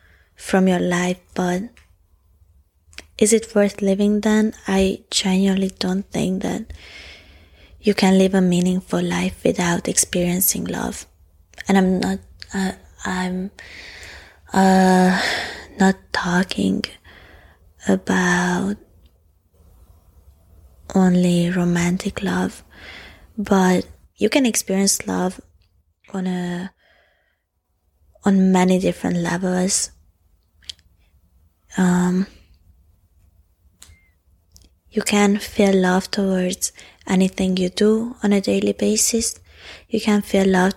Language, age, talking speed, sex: English, 20-39, 95 wpm, female